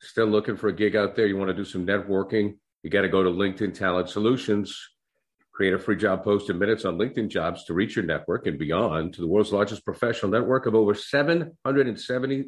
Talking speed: 220 wpm